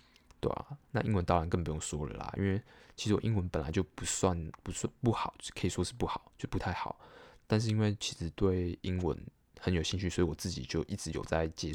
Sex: male